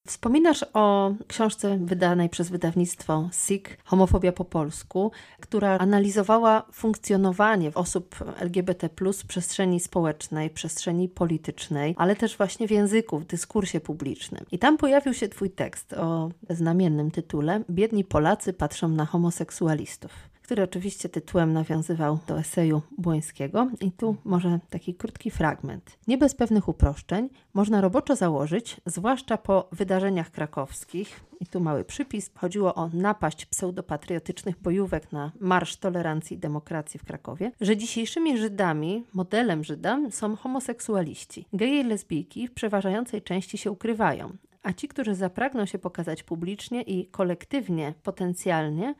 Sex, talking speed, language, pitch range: female, 130 wpm, Polish, 165-215 Hz